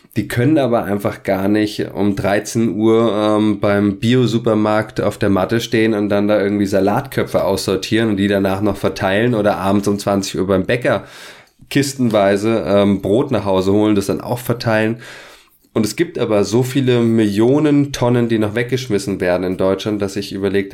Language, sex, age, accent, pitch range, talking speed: German, male, 20-39, German, 100-115 Hz, 175 wpm